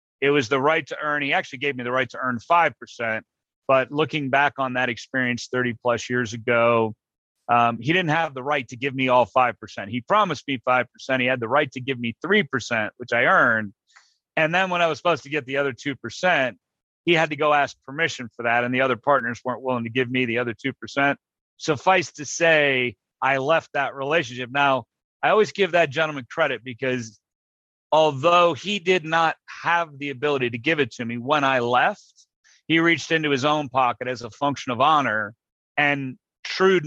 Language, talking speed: English, 215 wpm